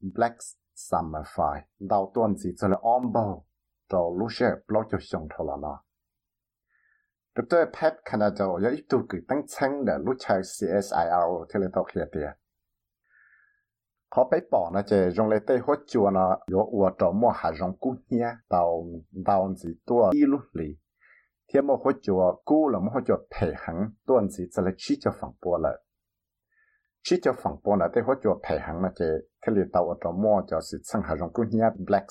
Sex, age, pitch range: male, 60-79, 90-120 Hz